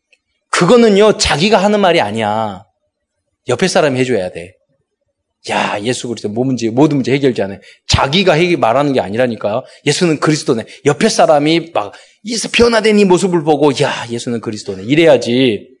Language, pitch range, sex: Korean, 130-210 Hz, male